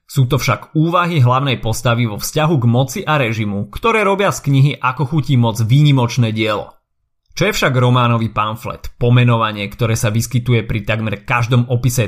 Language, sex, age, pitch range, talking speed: Slovak, male, 30-49, 115-150 Hz, 170 wpm